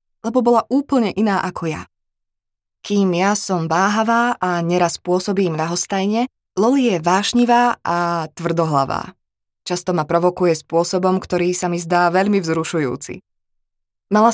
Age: 20-39